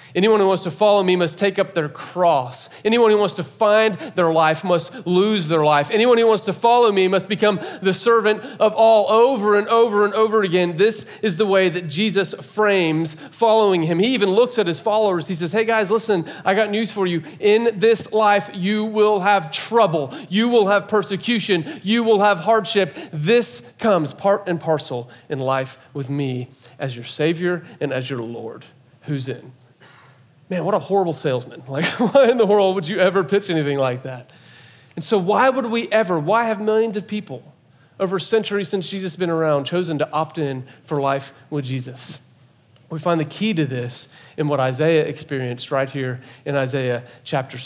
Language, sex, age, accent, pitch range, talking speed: English, male, 40-59, American, 140-210 Hz, 195 wpm